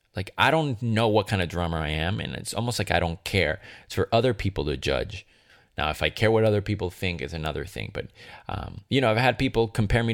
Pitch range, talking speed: 85-110 Hz, 255 wpm